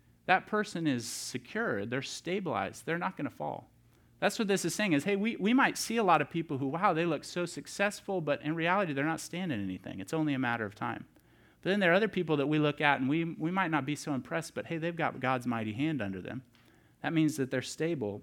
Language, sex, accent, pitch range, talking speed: English, male, American, 120-165 Hz, 255 wpm